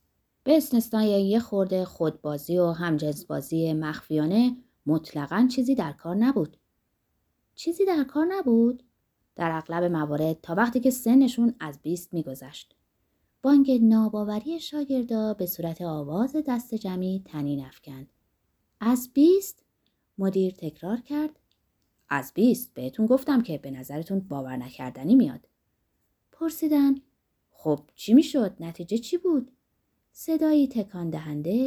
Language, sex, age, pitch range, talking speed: Persian, female, 20-39, 165-265 Hz, 115 wpm